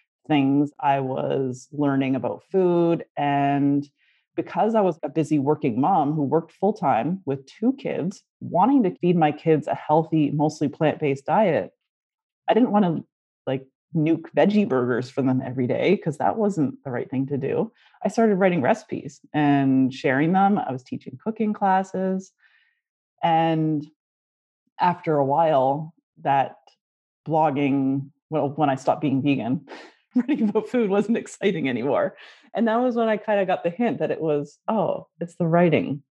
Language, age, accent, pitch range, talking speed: English, 30-49, American, 140-195 Hz, 160 wpm